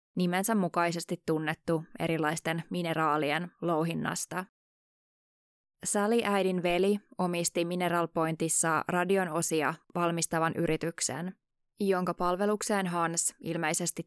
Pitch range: 160-185 Hz